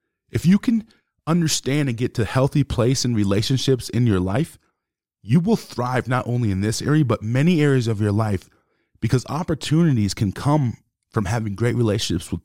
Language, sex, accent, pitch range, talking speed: English, male, American, 105-140 Hz, 185 wpm